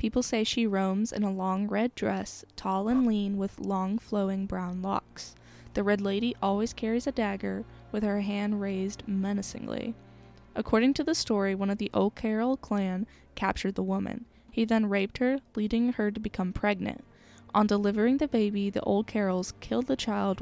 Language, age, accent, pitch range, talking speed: English, 10-29, American, 195-230 Hz, 175 wpm